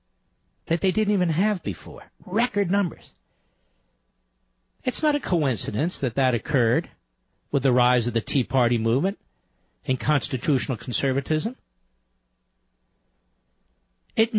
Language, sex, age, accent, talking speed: English, male, 60-79, American, 115 wpm